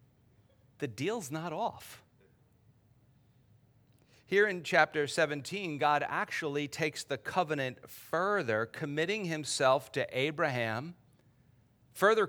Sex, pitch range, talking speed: male, 120-155 Hz, 95 wpm